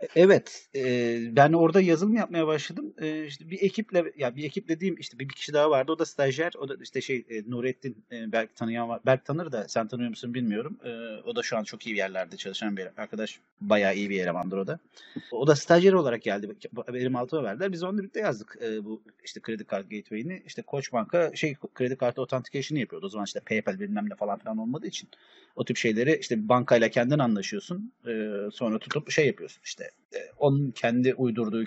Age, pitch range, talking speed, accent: 30-49, 115-175 Hz, 210 wpm, native